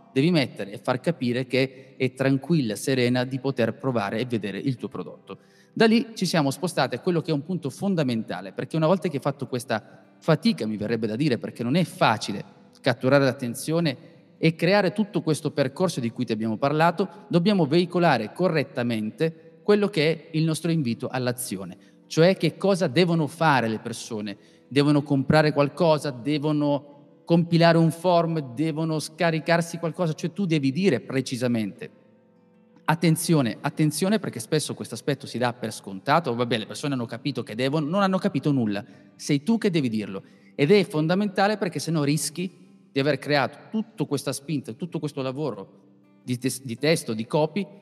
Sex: male